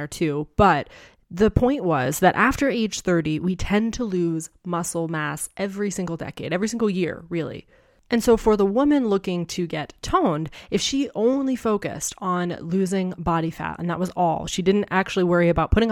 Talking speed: 185 wpm